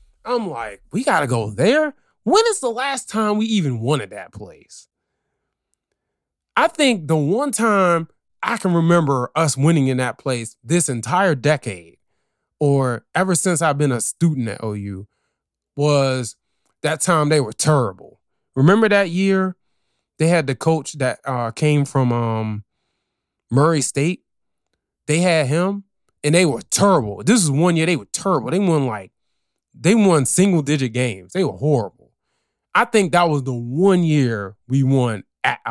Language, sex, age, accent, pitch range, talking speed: English, male, 20-39, American, 125-190 Hz, 165 wpm